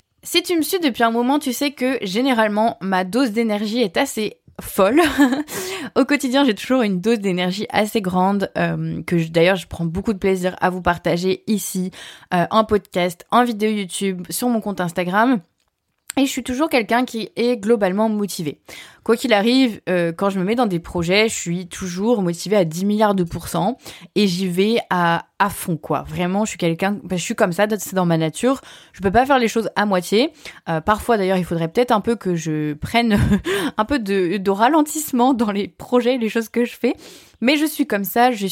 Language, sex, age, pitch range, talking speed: French, female, 20-39, 180-245 Hz, 210 wpm